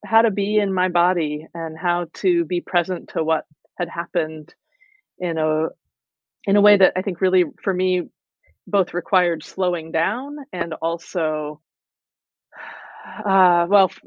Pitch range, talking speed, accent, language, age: 160-200 Hz, 145 wpm, American, English, 30-49